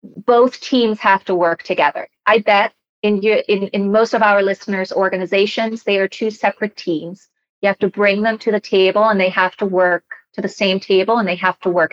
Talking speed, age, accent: 220 wpm, 30-49, American